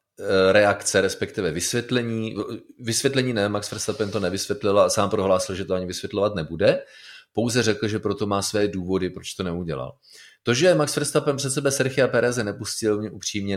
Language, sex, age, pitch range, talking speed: Czech, male, 30-49, 95-125 Hz, 170 wpm